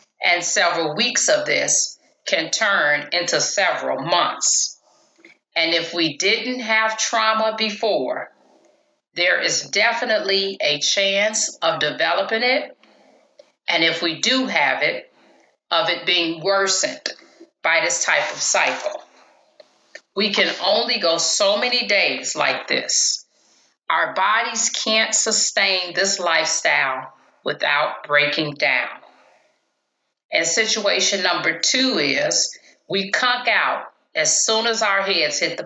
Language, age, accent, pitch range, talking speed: English, 40-59, American, 170-230 Hz, 125 wpm